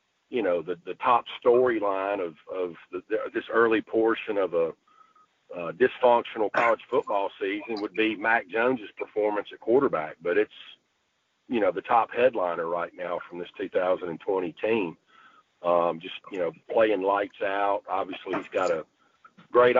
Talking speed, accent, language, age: 160 wpm, American, English, 50-69